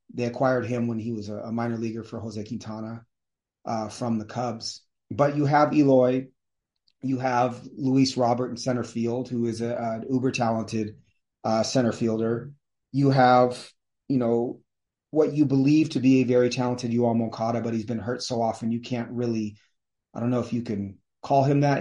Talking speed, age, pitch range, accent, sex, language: 185 wpm, 30-49, 115-130 Hz, American, male, English